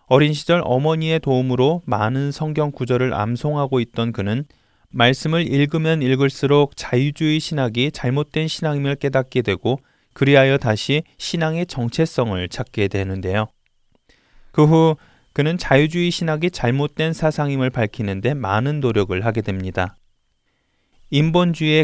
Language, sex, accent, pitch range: Korean, male, native, 115-155 Hz